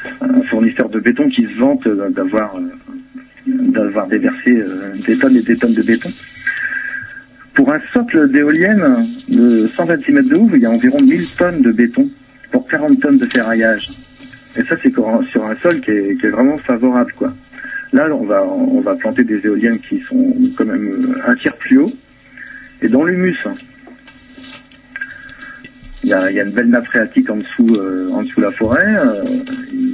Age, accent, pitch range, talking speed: 40-59, French, 250-275 Hz, 180 wpm